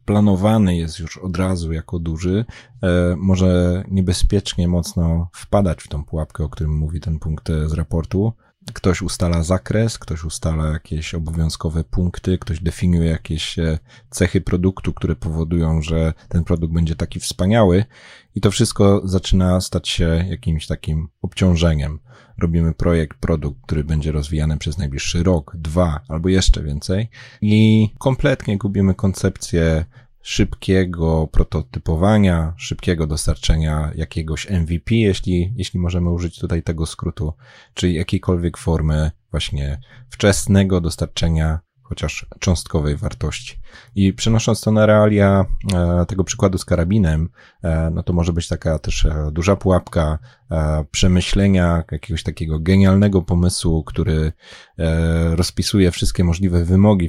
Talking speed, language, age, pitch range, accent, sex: 125 wpm, Polish, 30-49, 80-95 Hz, native, male